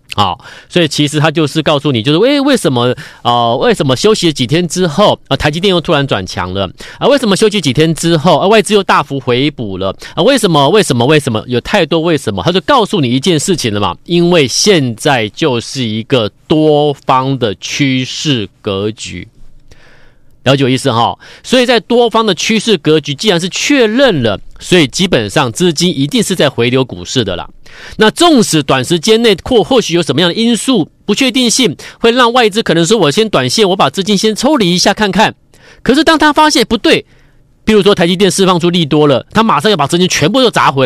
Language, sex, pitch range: Chinese, male, 130-205 Hz